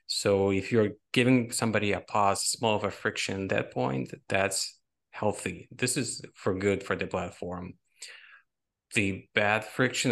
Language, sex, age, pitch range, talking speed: English, male, 20-39, 95-110 Hz, 155 wpm